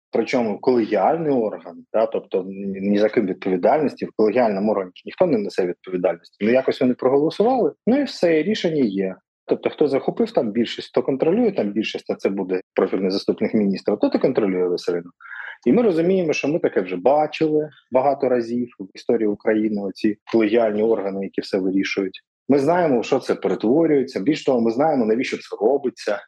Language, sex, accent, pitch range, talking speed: Ukrainian, male, native, 105-155 Hz, 170 wpm